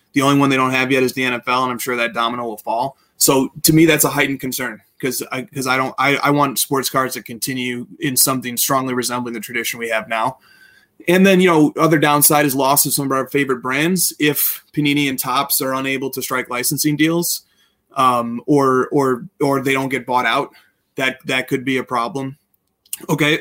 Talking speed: 220 wpm